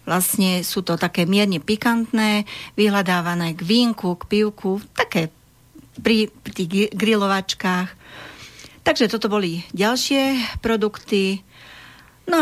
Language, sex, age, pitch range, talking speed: Slovak, female, 40-59, 175-215 Hz, 100 wpm